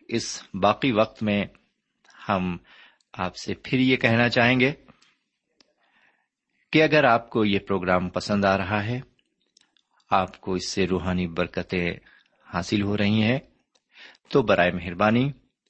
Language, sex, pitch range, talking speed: Urdu, male, 90-130 Hz, 135 wpm